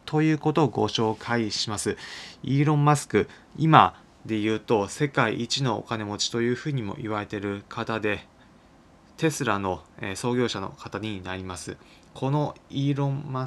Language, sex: Japanese, male